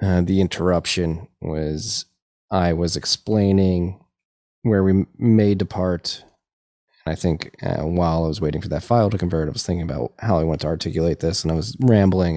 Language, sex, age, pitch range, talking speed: English, male, 20-39, 80-95 Hz, 185 wpm